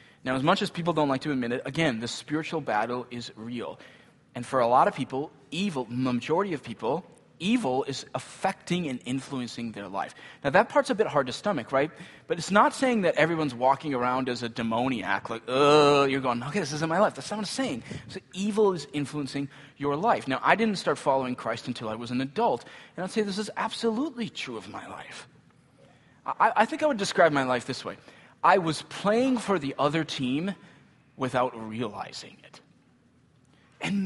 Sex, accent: male, American